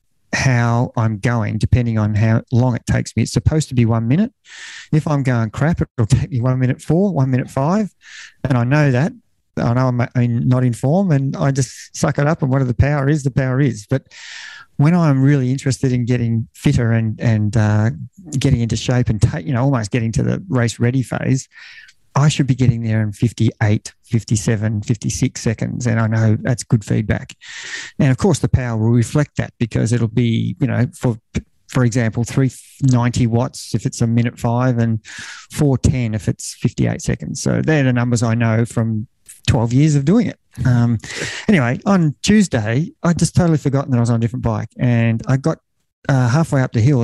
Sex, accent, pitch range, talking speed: male, Australian, 115-145 Hz, 200 wpm